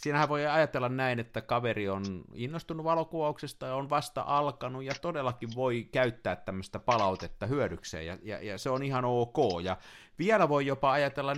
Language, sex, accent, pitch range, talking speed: Finnish, male, native, 110-145 Hz, 170 wpm